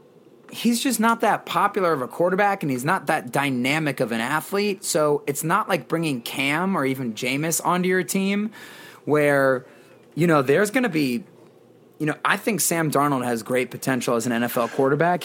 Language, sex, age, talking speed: English, male, 30-49, 190 wpm